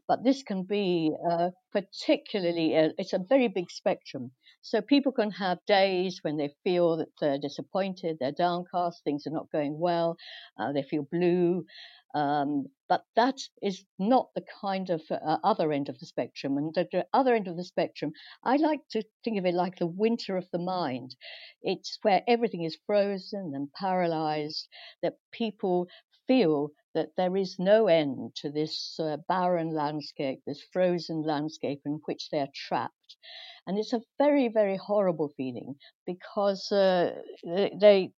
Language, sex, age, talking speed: English, female, 60-79, 165 wpm